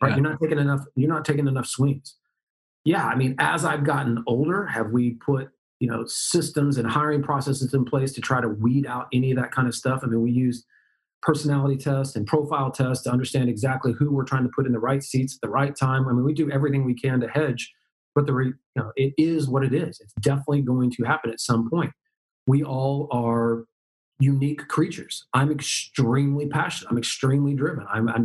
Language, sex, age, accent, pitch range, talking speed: English, male, 40-59, American, 120-145 Hz, 220 wpm